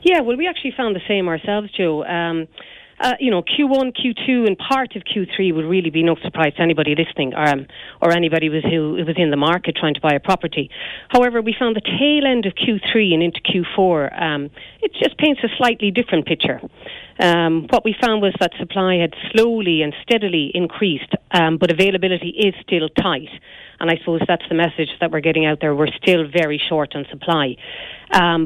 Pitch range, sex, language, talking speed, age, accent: 155-195 Hz, female, English, 200 wpm, 40-59, Irish